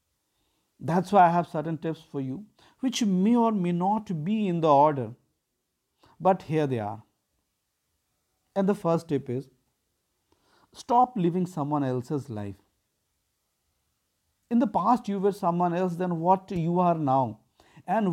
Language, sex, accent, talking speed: English, male, Indian, 145 wpm